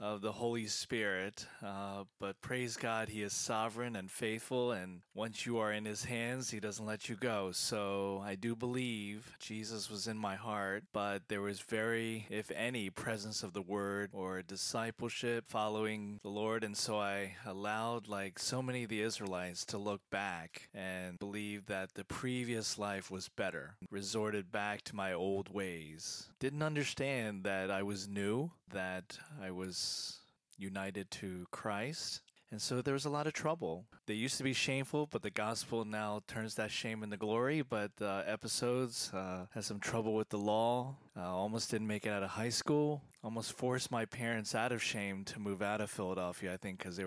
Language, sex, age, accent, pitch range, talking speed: English, male, 20-39, American, 100-115 Hz, 185 wpm